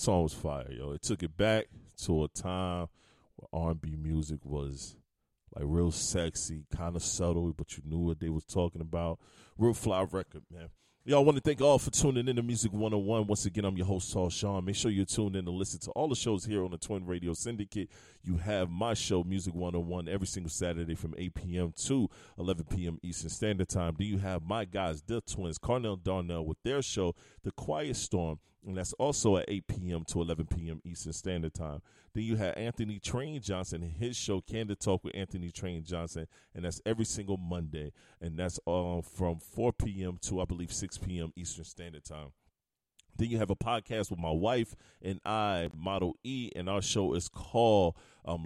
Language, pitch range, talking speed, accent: English, 85-105 Hz, 205 wpm, American